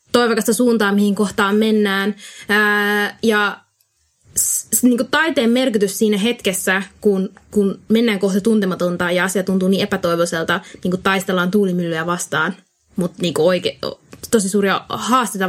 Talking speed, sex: 130 wpm, female